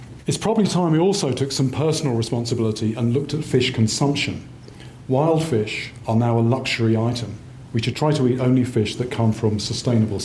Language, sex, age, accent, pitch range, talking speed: English, male, 40-59, British, 115-135 Hz, 185 wpm